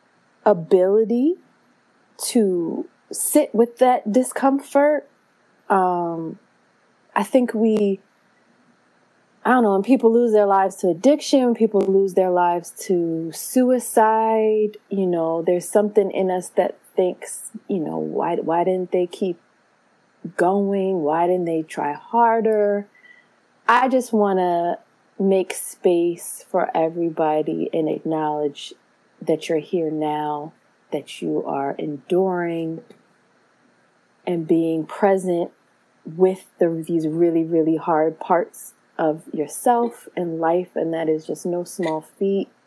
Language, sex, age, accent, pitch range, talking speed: English, female, 20-39, American, 165-215 Hz, 120 wpm